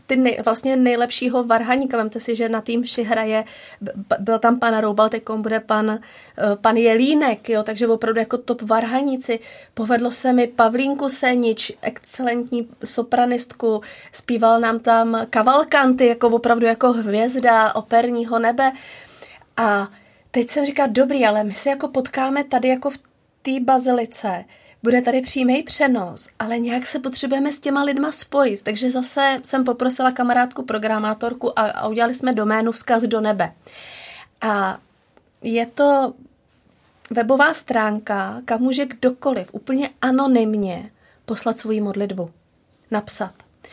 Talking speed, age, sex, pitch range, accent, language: 130 wpm, 30-49, female, 225-255 Hz, native, Czech